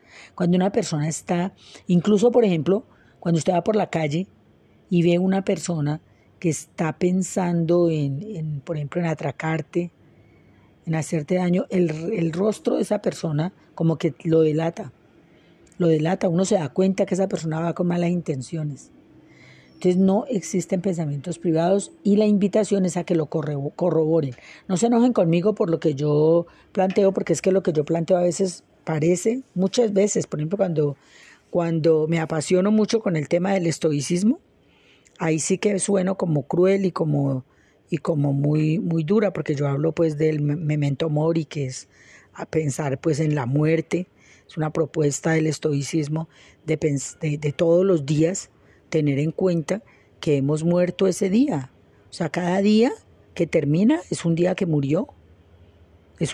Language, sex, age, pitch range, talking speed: Spanish, female, 40-59, 155-190 Hz, 170 wpm